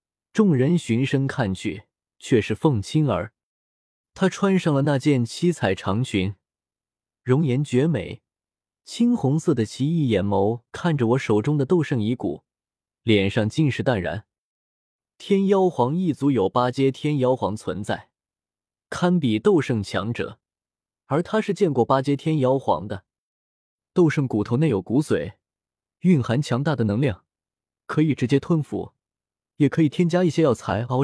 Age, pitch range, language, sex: 20-39, 115-160 Hz, Chinese, male